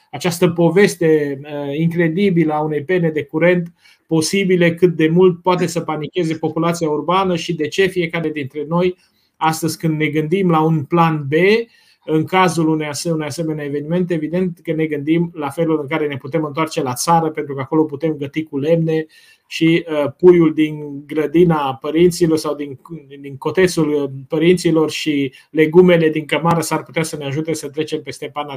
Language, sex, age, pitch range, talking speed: Romanian, male, 30-49, 155-180 Hz, 165 wpm